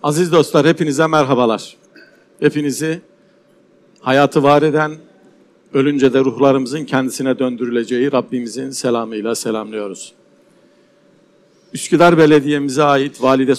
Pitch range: 120-145 Hz